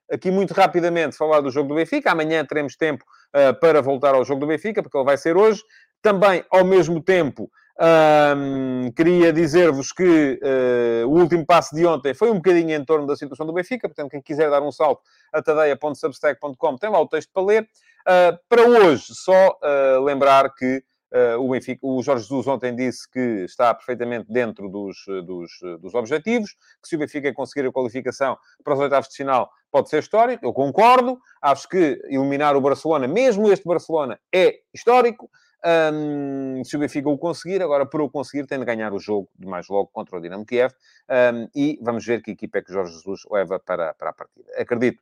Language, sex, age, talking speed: Portuguese, male, 30-49, 200 wpm